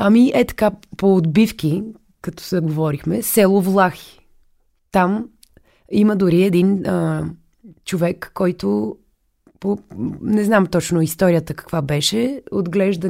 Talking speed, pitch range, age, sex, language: 115 wpm, 180-225 Hz, 20-39, female, Bulgarian